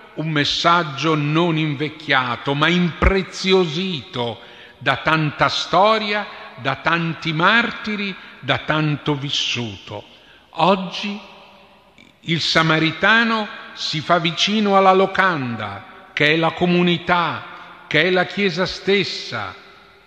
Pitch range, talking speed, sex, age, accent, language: 130-185 Hz, 95 wpm, male, 50-69, native, Italian